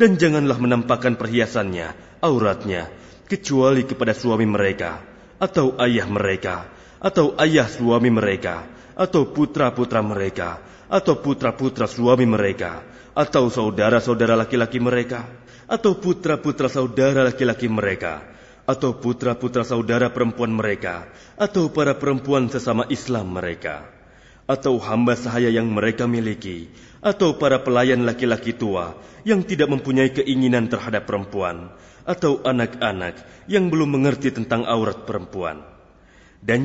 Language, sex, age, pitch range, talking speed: Indonesian, male, 30-49, 105-135 Hz, 115 wpm